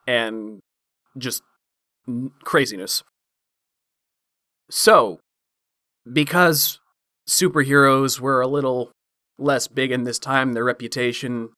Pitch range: 115-130 Hz